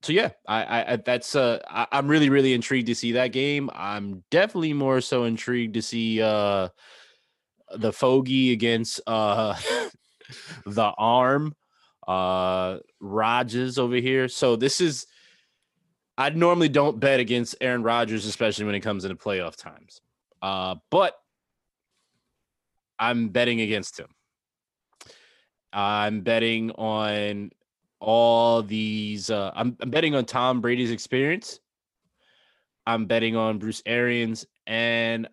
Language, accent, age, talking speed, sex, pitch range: English, American, 20-39, 125 wpm, male, 100-125 Hz